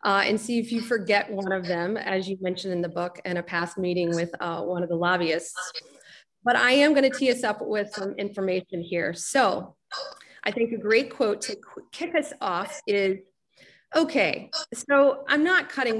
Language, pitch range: English, 185-230 Hz